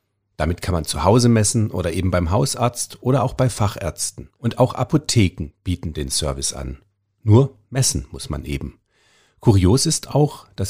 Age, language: 40-59, German